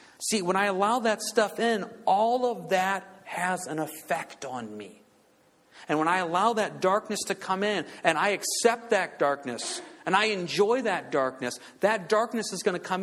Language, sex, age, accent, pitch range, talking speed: English, male, 50-69, American, 175-240 Hz, 185 wpm